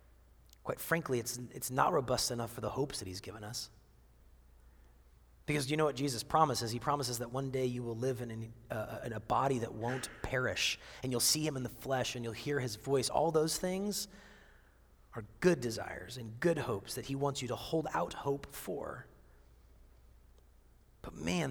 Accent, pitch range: American, 105-145 Hz